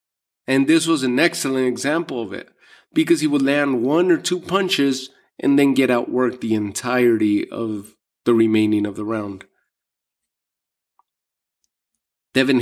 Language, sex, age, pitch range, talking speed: English, male, 30-49, 105-125 Hz, 145 wpm